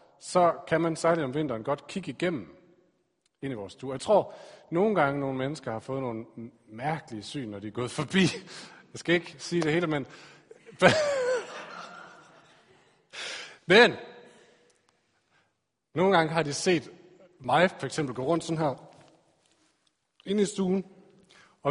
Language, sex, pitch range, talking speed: Danish, male, 130-195 Hz, 145 wpm